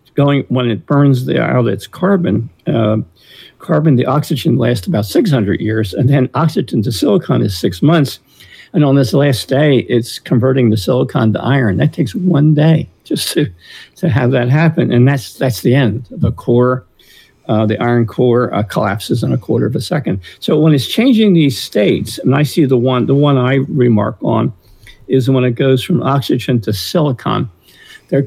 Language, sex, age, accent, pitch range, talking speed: English, male, 50-69, American, 115-140 Hz, 190 wpm